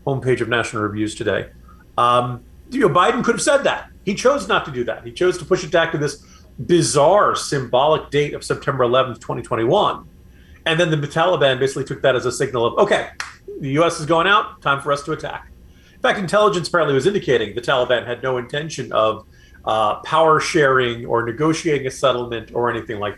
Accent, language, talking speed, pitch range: American, English, 195 wpm, 120-170 Hz